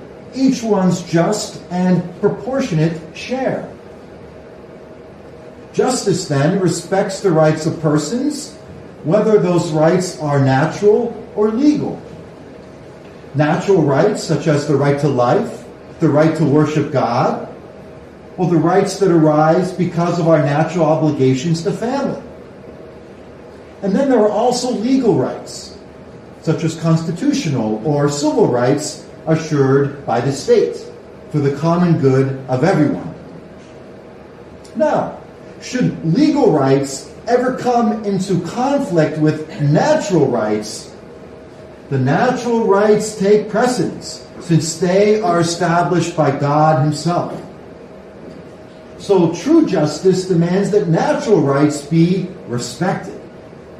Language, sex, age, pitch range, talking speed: English, male, 50-69, 155-210 Hz, 110 wpm